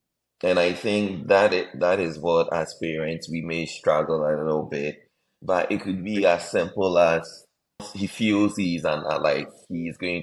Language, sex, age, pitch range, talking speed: English, male, 30-49, 80-95 Hz, 175 wpm